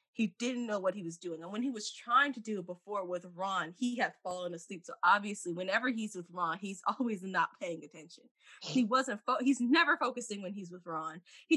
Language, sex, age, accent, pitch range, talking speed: English, female, 20-39, American, 185-255 Hz, 225 wpm